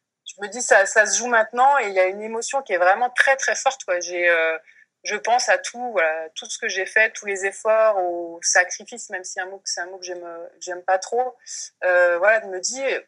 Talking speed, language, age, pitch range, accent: 255 wpm, French, 20-39, 185-245 Hz, French